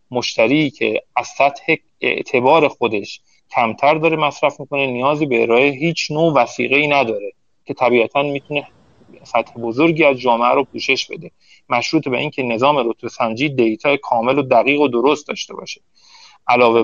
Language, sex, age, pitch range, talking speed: Persian, male, 40-59, 120-150 Hz, 155 wpm